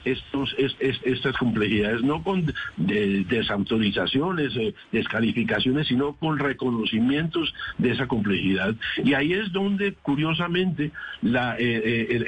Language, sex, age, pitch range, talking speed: Spanish, male, 60-79, 120-160 Hz, 95 wpm